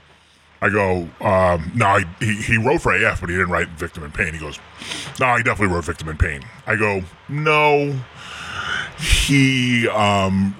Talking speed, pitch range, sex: 170 wpm, 85-115 Hz, female